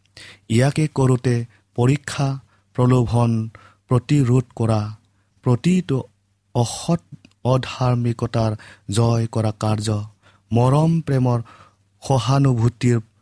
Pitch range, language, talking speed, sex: 105-125 Hz, English, 80 wpm, male